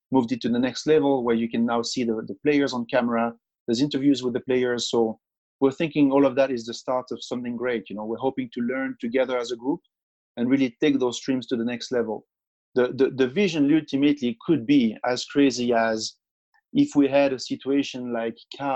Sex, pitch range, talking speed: male, 115-135 Hz, 220 wpm